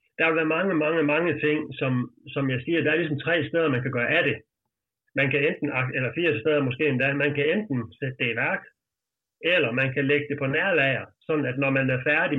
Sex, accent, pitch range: male, native, 130-155 Hz